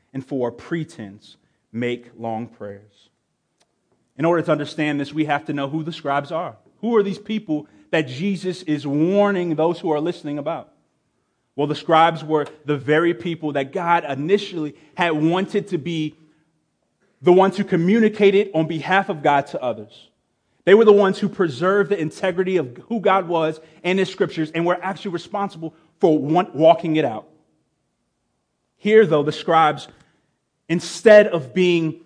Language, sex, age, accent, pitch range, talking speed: English, male, 30-49, American, 150-185 Hz, 160 wpm